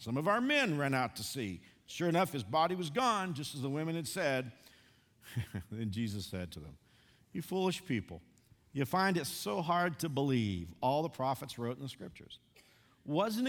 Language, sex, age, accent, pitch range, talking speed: English, male, 50-69, American, 115-165 Hz, 190 wpm